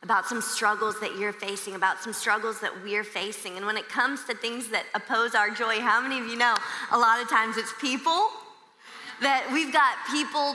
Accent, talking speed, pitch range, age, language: American, 210 wpm, 225-275 Hz, 20-39, English